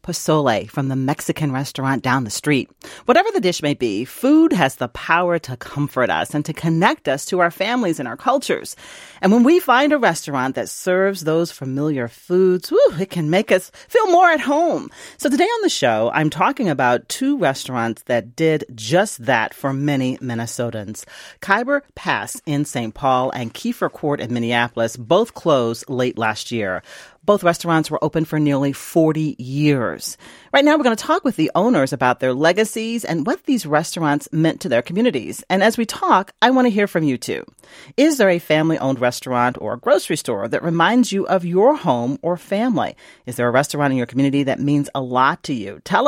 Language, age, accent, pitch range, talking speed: English, 40-59, American, 135-225 Hz, 195 wpm